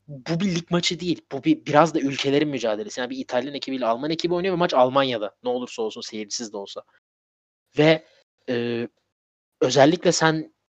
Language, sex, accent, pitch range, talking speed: Turkish, male, native, 120-160 Hz, 175 wpm